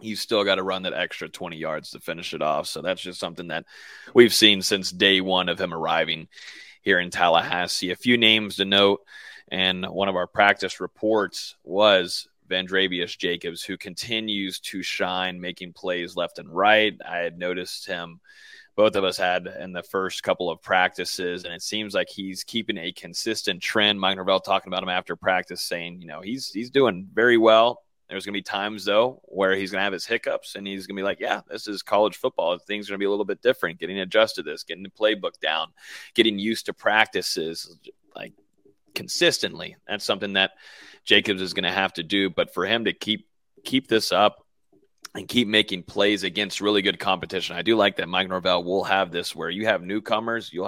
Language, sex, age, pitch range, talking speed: English, male, 30-49, 90-105 Hz, 210 wpm